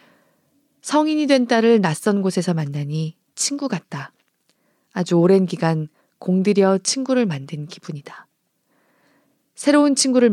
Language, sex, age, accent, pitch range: Korean, female, 20-39, native, 160-215 Hz